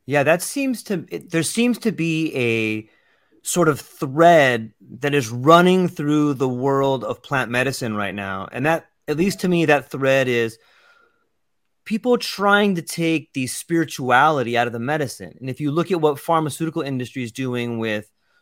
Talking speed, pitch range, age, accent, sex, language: 175 wpm, 125-175 Hz, 30-49, American, male, English